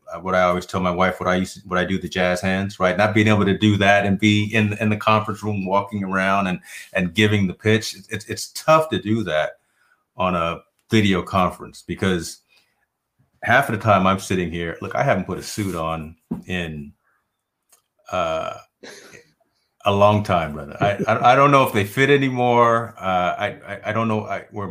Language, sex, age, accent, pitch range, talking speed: English, male, 30-49, American, 90-110 Hz, 205 wpm